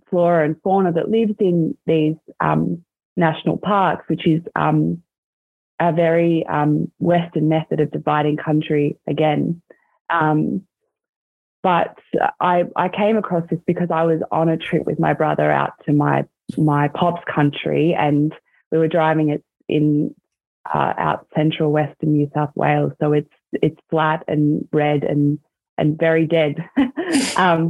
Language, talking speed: English, 145 wpm